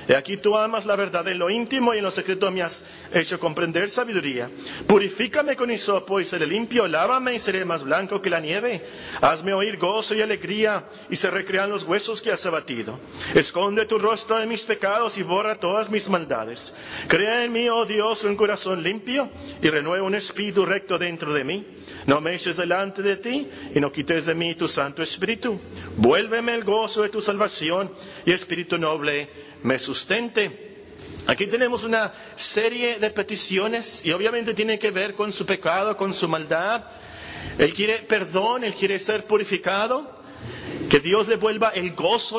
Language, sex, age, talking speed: Spanish, male, 50-69, 180 wpm